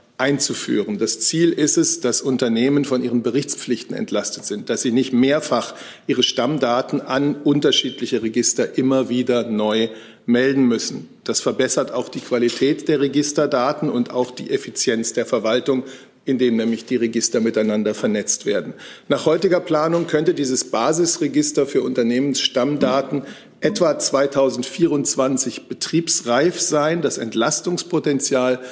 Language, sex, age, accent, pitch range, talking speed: German, male, 50-69, German, 120-150 Hz, 125 wpm